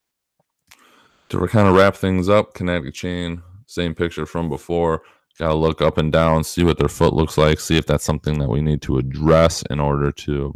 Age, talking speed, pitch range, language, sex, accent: 20-39, 205 wpm, 75-85 Hz, English, male, American